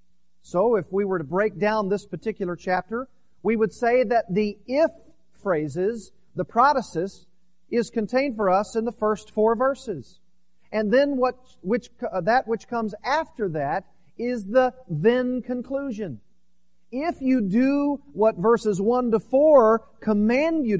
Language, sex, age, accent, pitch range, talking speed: English, male, 40-59, American, 170-240 Hz, 145 wpm